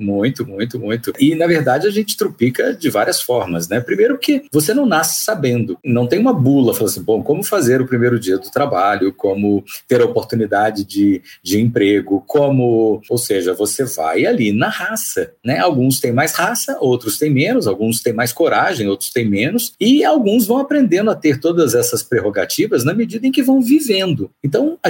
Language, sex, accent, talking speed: Portuguese, male, Brazilian, 195 wpm